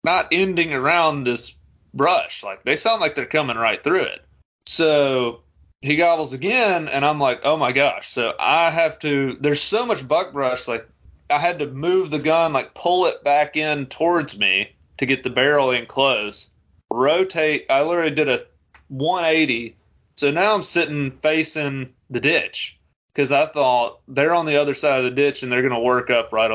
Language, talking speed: English, 190 wpm